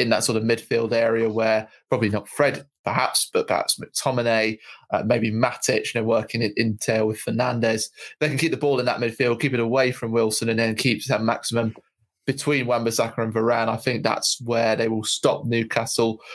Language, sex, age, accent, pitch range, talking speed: English, male, 20-39, British, 115-135 Hz, 205 wpm